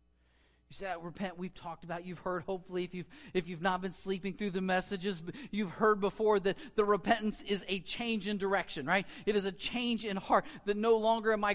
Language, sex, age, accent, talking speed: English, male, 40-59, American, 220 wpm